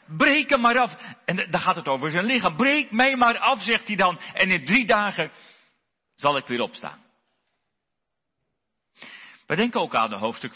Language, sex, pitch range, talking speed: Dutch, male, 160-240 Hz, 180 wpm